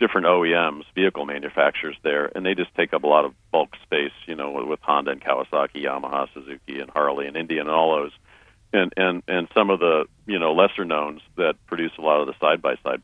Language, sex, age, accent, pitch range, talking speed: English, male, 50-69, American, 80-100 Hz, 215 wpm